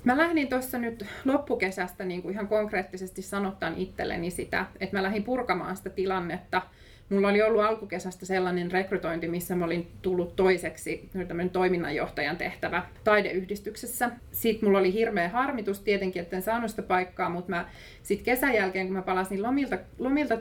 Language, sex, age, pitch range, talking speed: Finnish, female, 30-49, 175-205 Hz, 145 wpm